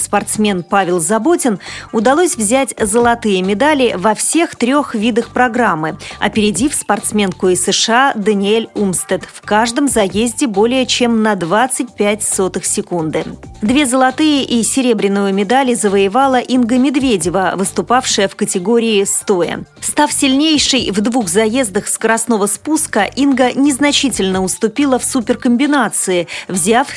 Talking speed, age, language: 115 wpm, 30-49, Russian